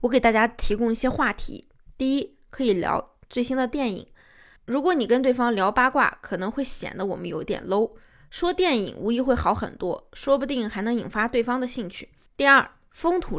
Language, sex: Chinese, female